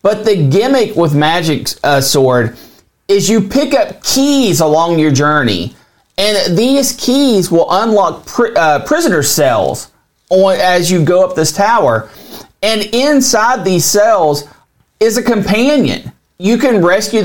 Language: English